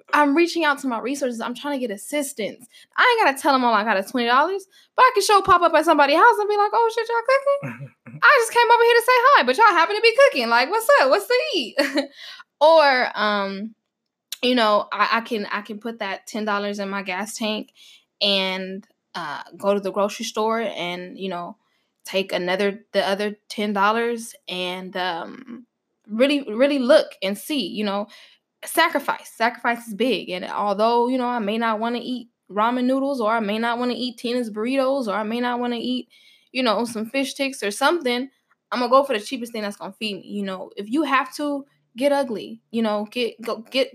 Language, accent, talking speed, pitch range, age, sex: English, American, 225 wpm, 210-285 Hz, 10-29, female